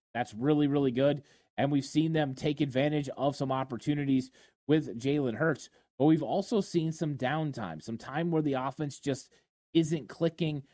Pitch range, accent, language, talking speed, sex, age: 130-150 Hz, American, English, 170 wpm, male, 20-39